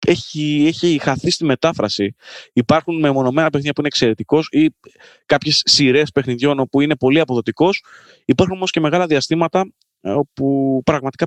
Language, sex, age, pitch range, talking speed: Greek, male, 20-39, 115-160 Hz, 140 wpm